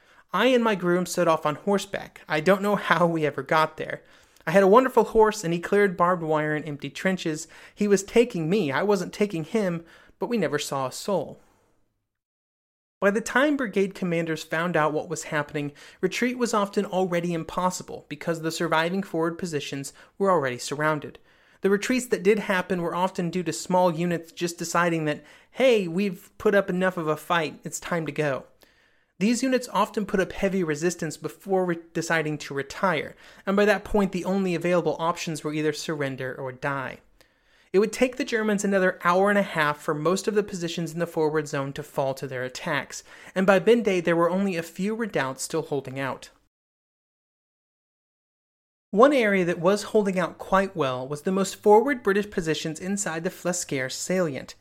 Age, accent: 30-49, American